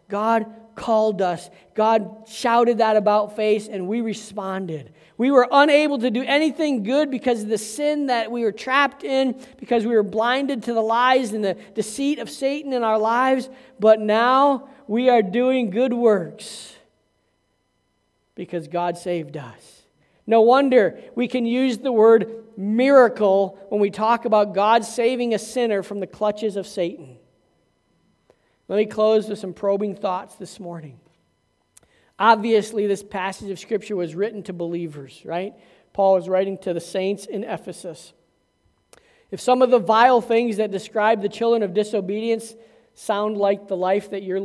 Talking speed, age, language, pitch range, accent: 160 wpm, 40-59, English, 180-230 Hz, American